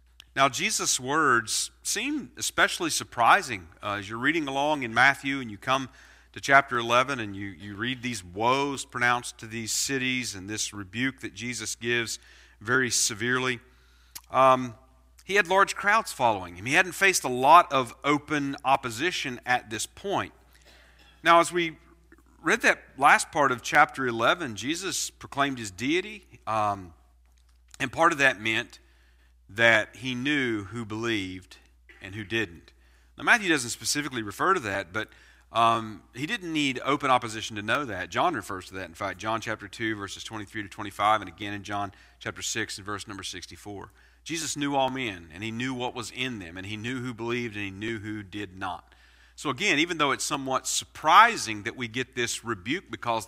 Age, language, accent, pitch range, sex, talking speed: 40-59, English, American, 100-130 Hz, male, 180 wpm